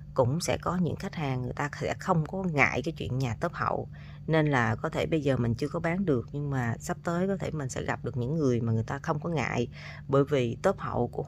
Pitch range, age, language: 130-175 Hz, 20-39, Vietnamese